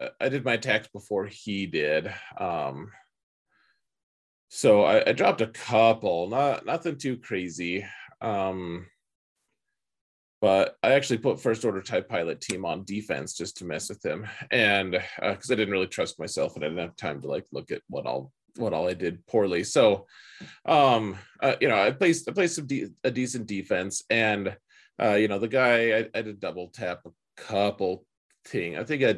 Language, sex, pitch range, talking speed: English, male, 95-125 Hz, 185 wpm